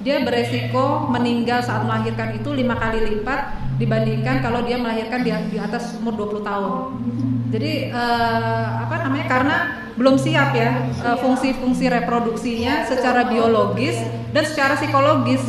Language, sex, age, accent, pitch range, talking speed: Indonesian, female, 30-49, native, 200-250 Hz, 130 wpm